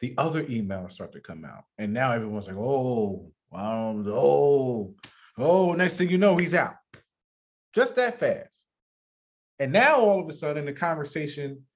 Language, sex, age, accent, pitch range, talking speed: English, male, 30-49, American, 130-205 Hz, 165 wpm